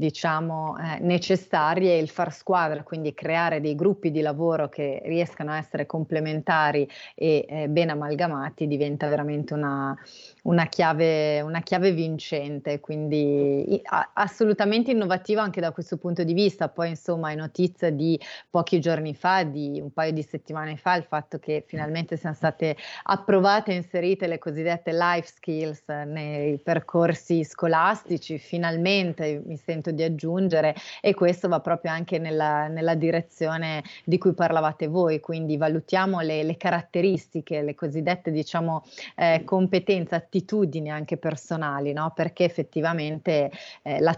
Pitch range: 155-170 Hz